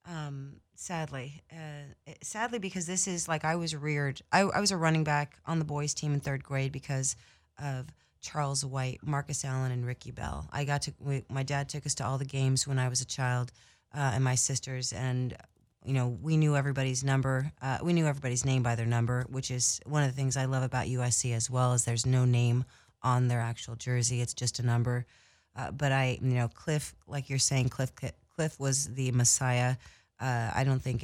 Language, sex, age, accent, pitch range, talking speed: English, female, 30-49, American, 125-140 Hz, 215 wpm